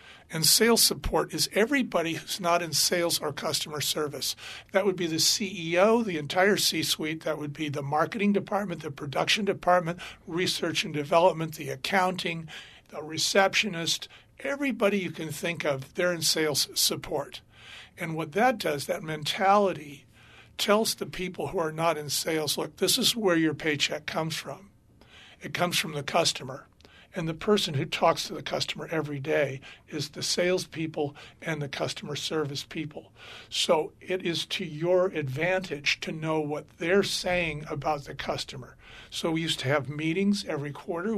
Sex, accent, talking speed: male, American, 165 wpm